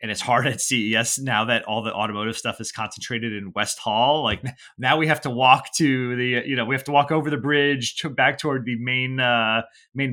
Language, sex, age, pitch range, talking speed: English, male, 30-49, 105-125 Hz, 235 wpm